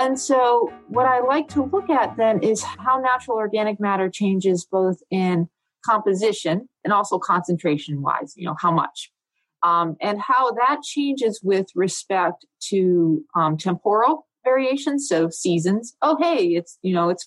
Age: 40-59